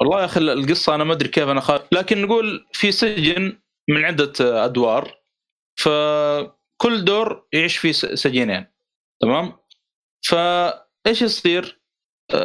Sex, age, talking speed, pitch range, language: male, 30-49, 120 wpm, 145-185 Hz, Arabic